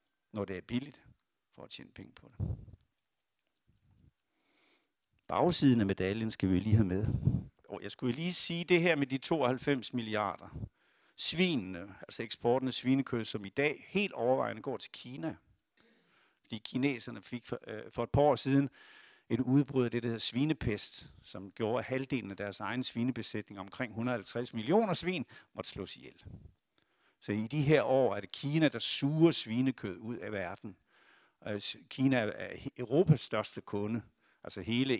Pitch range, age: 110-140 Hz, 60-79